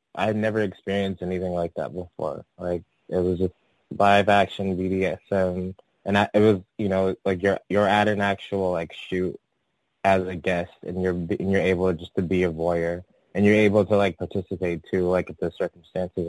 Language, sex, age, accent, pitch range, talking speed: English, male, 20-39, American, 90-105 Hz, 200 wpm